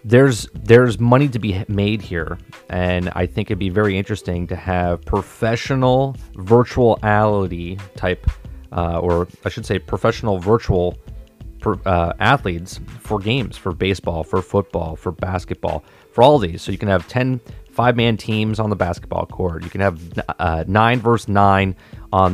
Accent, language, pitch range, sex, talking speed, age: American, English, 90-115 Hz, male, 155 wpm, 30-49